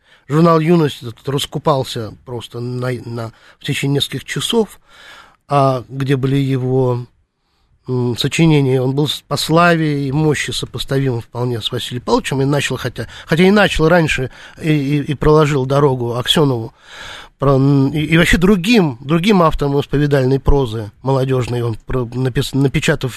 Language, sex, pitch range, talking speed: Russian, male, 130-165 Hz, 140 wpm